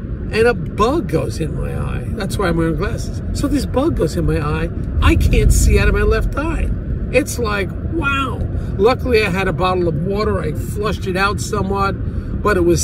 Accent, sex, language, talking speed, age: American, male, English, 210 wpm, 50-69